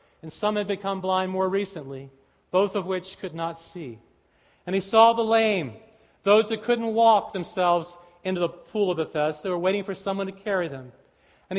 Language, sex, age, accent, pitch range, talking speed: English, male, 40-59, American, 170-220 Hz, 190 wpm